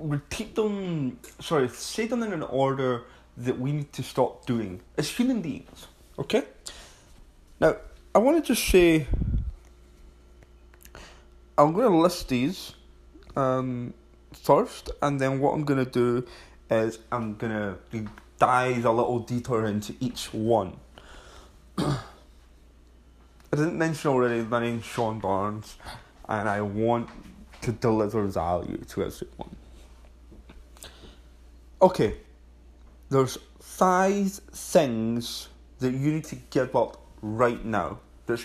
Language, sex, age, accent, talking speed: English, male, 20-39, British, 120 wpm